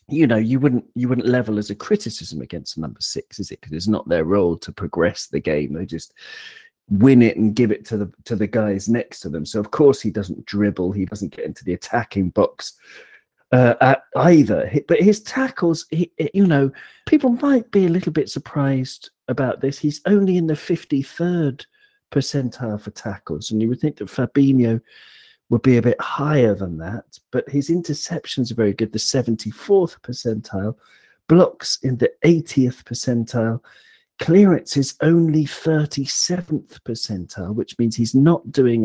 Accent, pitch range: British, 115-165 Hz